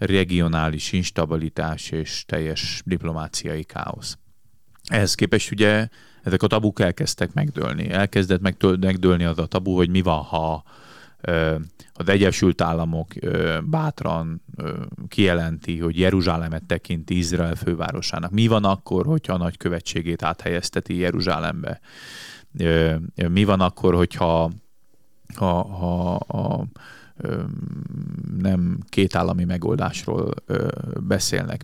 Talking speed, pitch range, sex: 95 wpm, 85-105 Hz, male